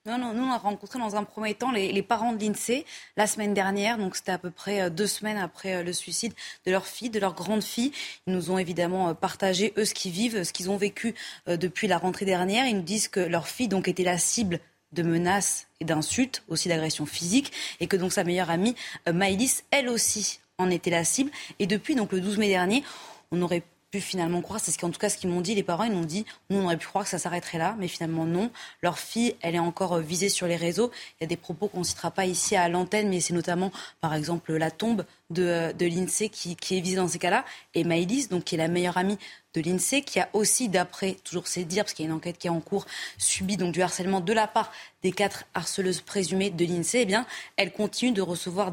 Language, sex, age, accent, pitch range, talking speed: French, female, 20-39, French, 175-210 Hz, 250 wpm